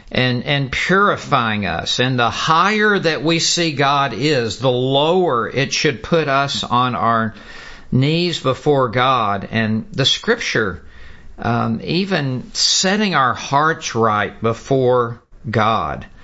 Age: 50-69